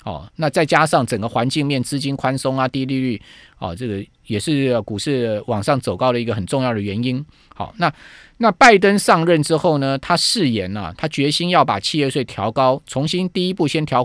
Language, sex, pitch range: Chinese, male, 120-160 Hz